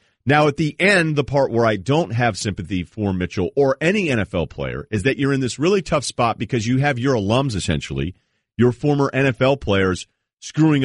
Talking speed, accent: 200 wpm, American